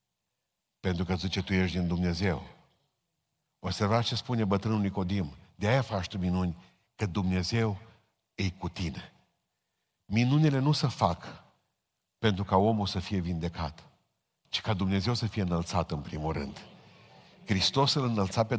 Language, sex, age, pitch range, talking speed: Romanian, male, 50-69, 95-125 Hz, 150 wpm